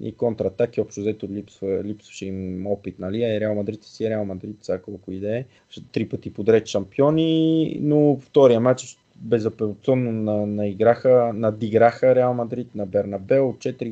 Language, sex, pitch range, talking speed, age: Bulgarian, male, 105-130 Hz, 160 wpm, 20-39